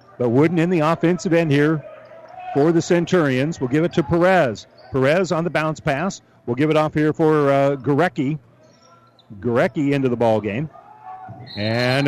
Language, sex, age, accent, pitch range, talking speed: English, male, 40-59, American, 130-170 Hz, 165 wpm